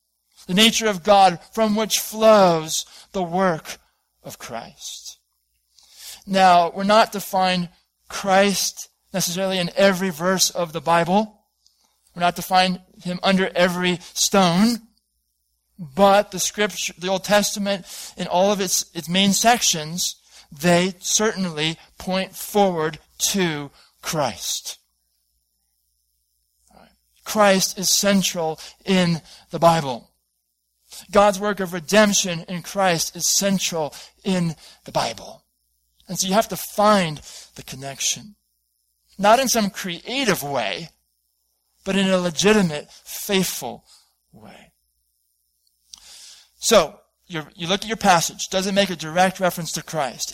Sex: male